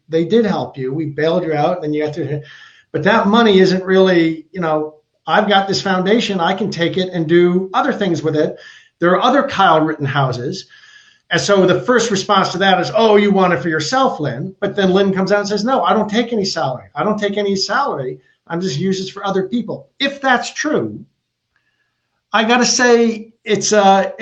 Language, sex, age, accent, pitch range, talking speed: English, male, 50-69, American, 160-210 Hz, 220 wpm